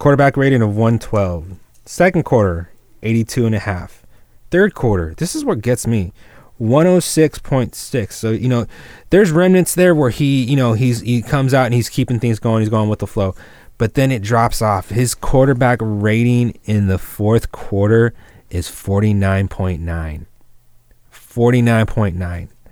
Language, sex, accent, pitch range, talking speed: English, male, American, 100-125 Hz, 150 wpm